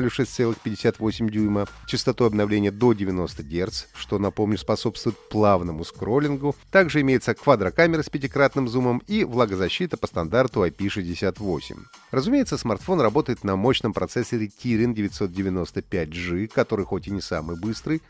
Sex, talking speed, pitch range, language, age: male, 120 wpm, 100-155 Hz, Russian, 30-49